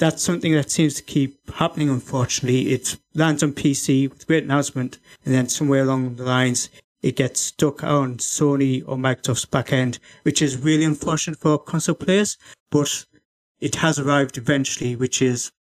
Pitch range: 130-150 Hz